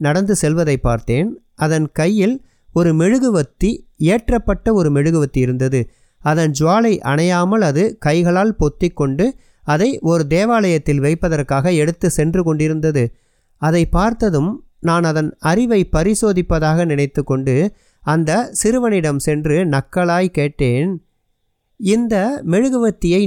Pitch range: 145-190 Hz